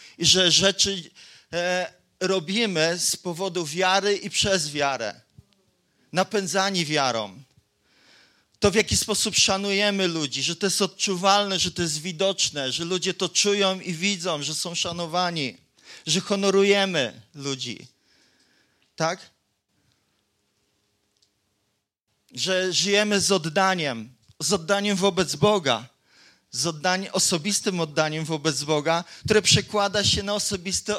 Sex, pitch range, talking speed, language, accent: male, 150-195 Hz, 110 wpm, Polish, native